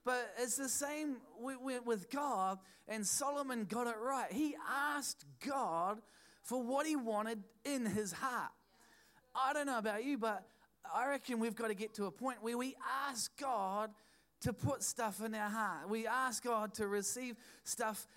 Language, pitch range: English, 200-245 Hz